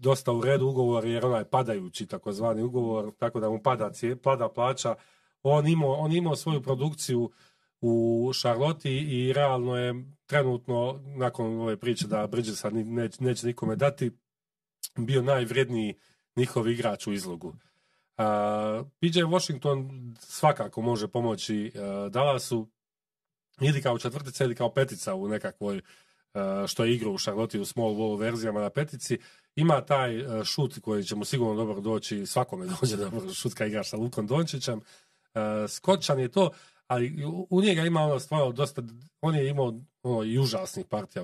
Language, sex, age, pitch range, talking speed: Croatian, male, 40-59, 110-145 Hz, 140 wpm